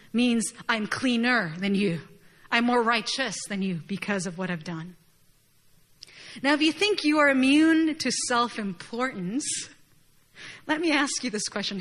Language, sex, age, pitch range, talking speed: English, female, 30-49, 205-290 Hz, 150 wpm